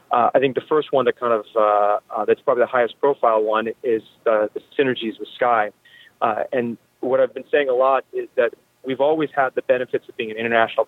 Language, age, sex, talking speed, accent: English, 30-49, male, 230 wpm, American